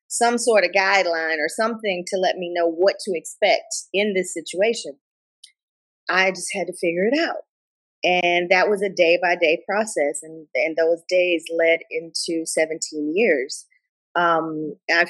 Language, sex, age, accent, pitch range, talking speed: English, female, 30-49, American, 160-195 Hz, 165 wpm